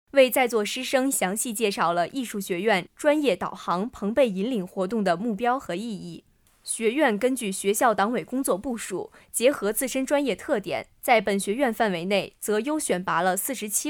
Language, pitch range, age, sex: Chinese, 195-260 Hz, 20-39, female